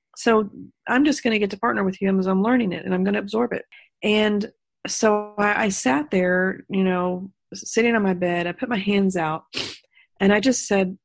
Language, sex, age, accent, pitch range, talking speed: English, female, 40-59, American, 175-205 Hz, 225 wpm